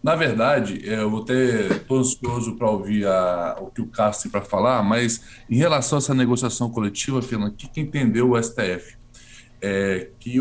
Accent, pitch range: Brazilian, 125-165 Hz